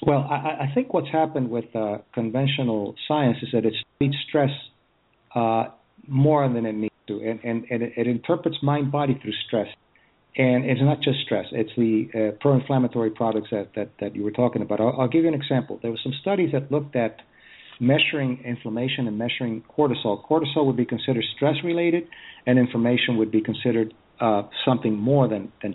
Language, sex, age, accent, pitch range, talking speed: English, male, 50-69, American, 115-145 Hz, 185 wpm